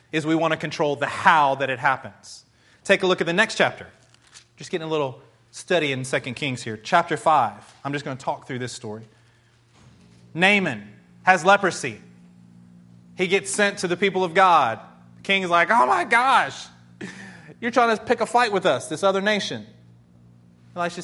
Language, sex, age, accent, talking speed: English, male, 30-49, American, 190 wpm